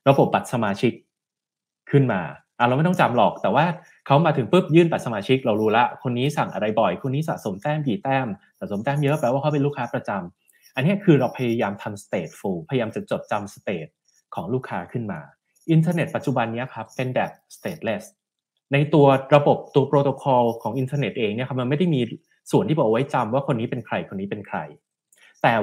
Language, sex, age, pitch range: Thai, male, 20-39, 120-155 Hz